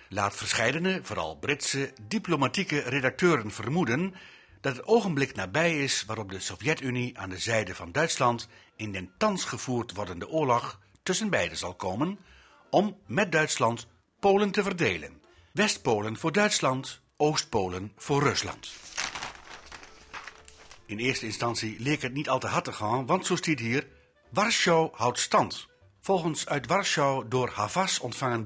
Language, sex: Dutch, male